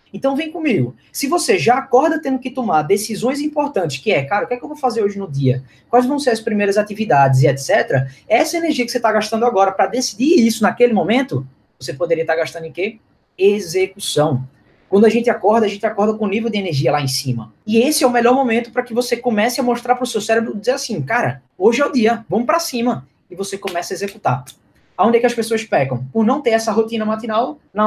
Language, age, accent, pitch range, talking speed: Portuguese, 20-39, Brazilian, 170-245 Hz, 245 wpm